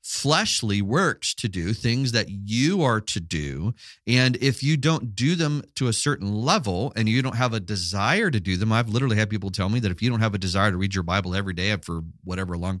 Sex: male